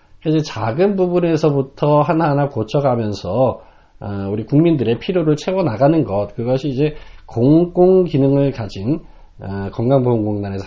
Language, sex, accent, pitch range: Korean, male, native, 100-150 Hz